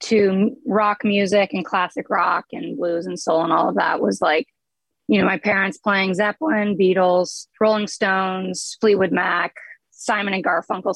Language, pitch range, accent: English, 190-230 Hz, American